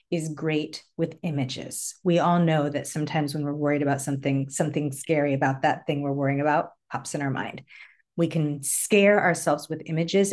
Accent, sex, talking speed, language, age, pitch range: American, female, 185 wpm, English, 40-59, 145-185 Hz